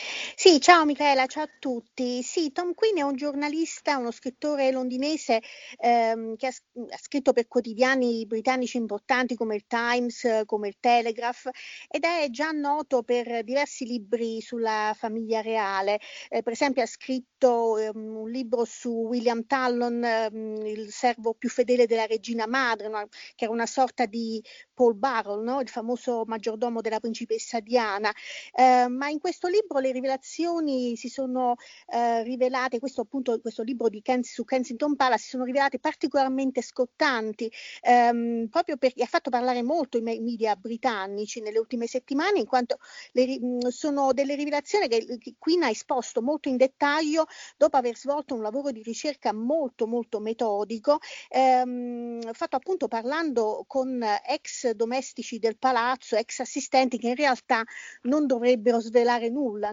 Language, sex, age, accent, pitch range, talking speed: Italian, female, 40-59, native, 230-275 Hz, 155 wpm